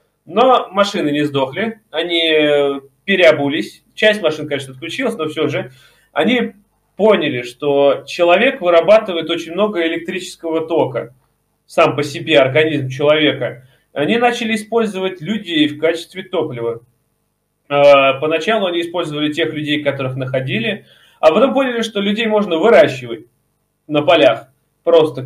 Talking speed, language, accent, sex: 120 wpm, Russian, native, male